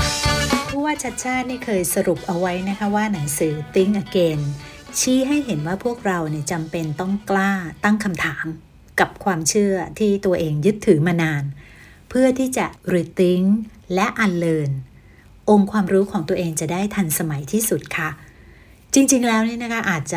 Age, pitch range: 60-79, 165-210 Hz